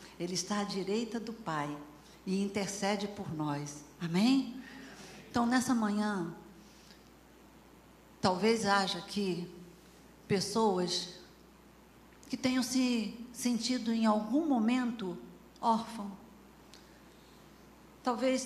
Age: 50-69